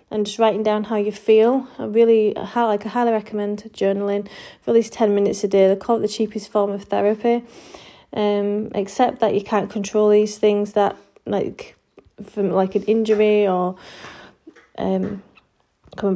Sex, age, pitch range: female, 30-49, 195-225 Hz